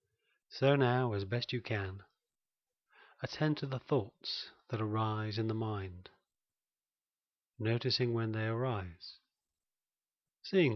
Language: English